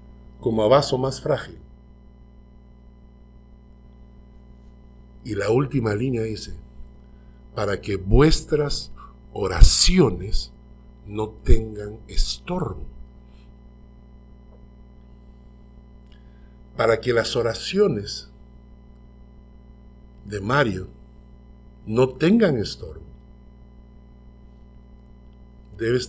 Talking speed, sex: 60 wpm, male